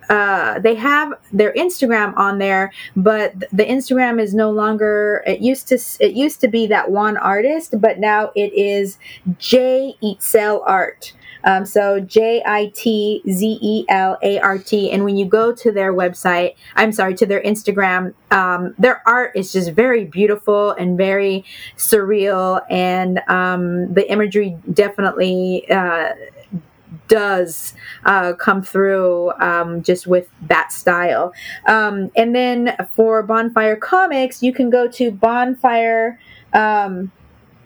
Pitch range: 190-230 Hz